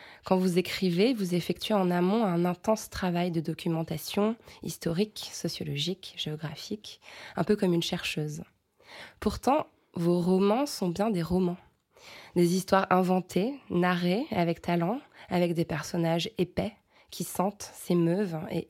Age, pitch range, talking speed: 20-39, 170-200 Hz, 130 wpm